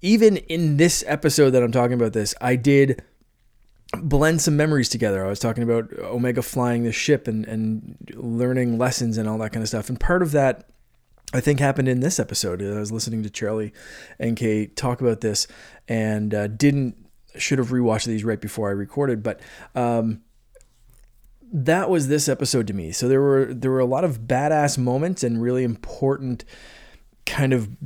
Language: English